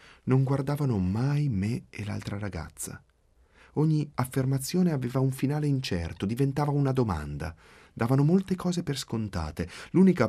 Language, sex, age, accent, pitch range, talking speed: Italian, male, 30-49, native, 85-130 Hz, 130 wpm